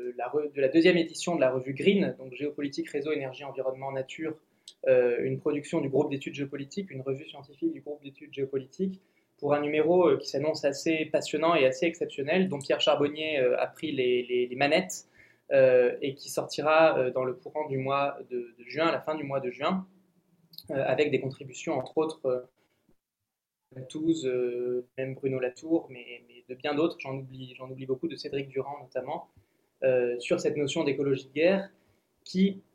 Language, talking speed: French, 190 wpm